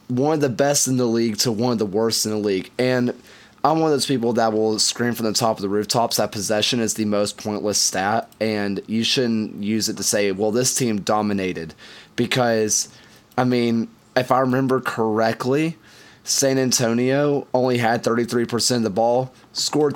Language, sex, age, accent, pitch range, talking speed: English, male, 20-39, American, 105-125 Hz, 190 wpm